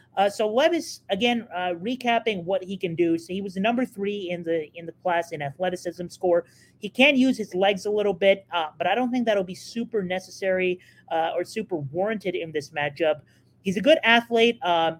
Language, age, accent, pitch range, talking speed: English, 30-49, American, 170-205 Hz, 210 wpm